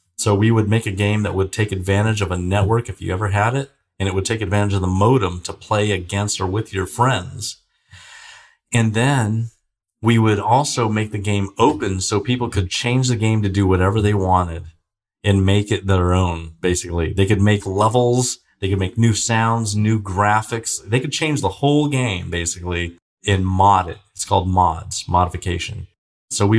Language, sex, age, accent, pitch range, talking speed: English, male, 40-59, American, 95-110 Hz, 195 wpm